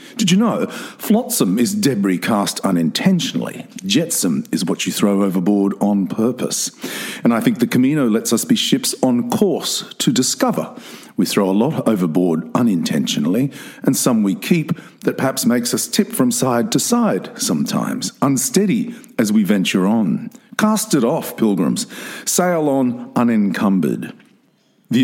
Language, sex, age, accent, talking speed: English, male, 50-69, Australian, 150 wpm